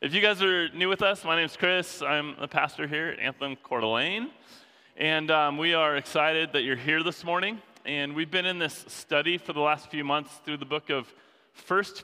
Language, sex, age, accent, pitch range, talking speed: English, male, 20-39, American, 140-180 Hz, 225 wpm